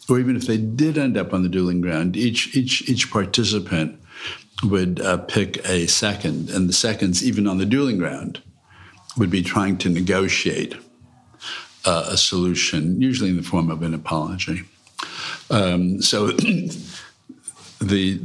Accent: American